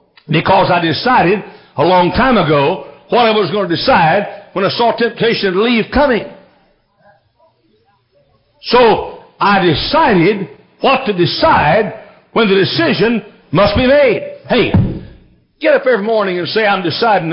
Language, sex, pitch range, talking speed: English, male, 180-265 Hz, 140 wpm